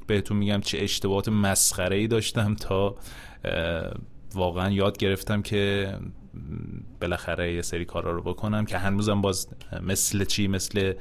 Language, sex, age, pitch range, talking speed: Persian, male, 30-49, 90-105 Hz, 130 wpm